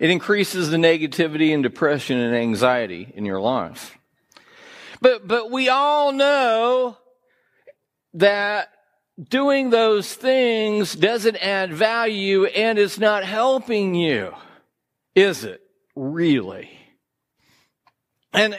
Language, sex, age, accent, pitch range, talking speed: English, male, 50-69, American, 165-225 Hz, 105 wpm